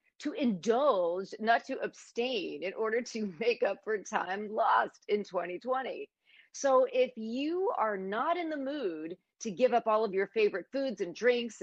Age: 40-59